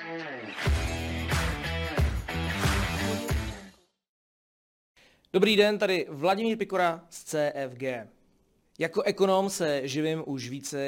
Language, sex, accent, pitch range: Czech, male, native, 125-170 Hz